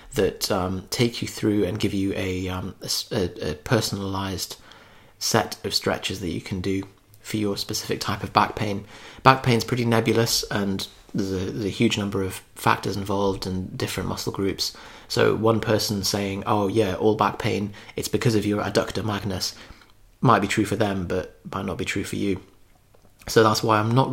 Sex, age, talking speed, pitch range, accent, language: male, 20-39, 195 wpm, 95-110 Hz, British, English